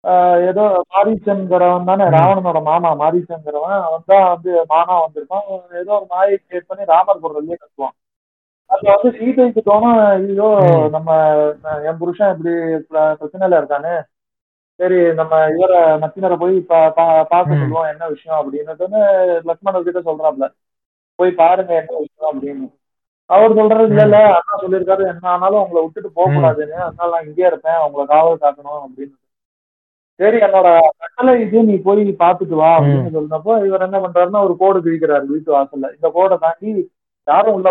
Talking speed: 140 wpm